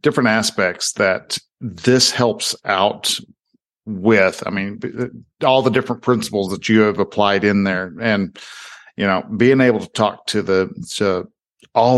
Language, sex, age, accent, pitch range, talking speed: English, male, 50-69, American, 100-115 Hz, 150 wpm